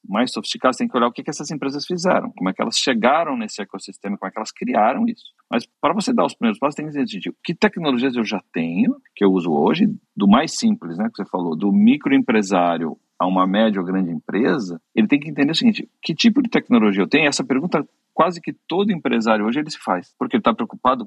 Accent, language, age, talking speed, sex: Brazilian, Portuguese, 40-59, 240 wpm, male